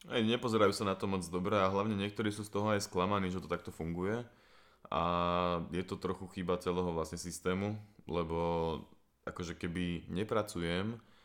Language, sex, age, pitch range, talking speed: Slovak, male, 20-39, 90-105 Hz, 165 wpm